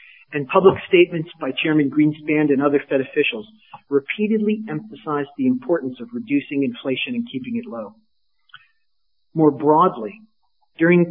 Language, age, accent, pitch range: English, 40-59, American, 135-170 Hz